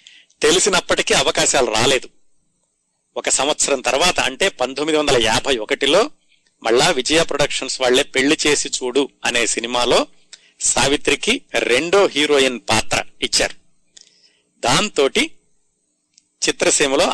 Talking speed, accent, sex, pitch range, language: 95 wpm, native, male, 125-155 Hz, Telugu